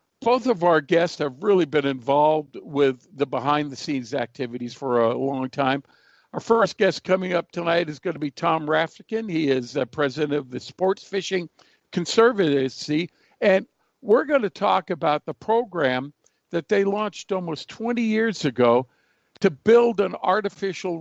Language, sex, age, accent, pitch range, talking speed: English, male, 50-69, American, 140-185 Hz, 160 wpm